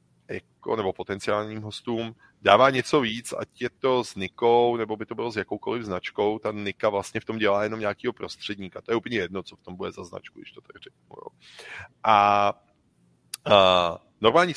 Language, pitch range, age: Czech, 95-115 Hz, 30-49